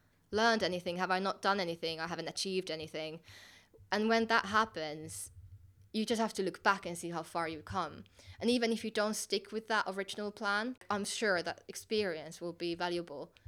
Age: 20-39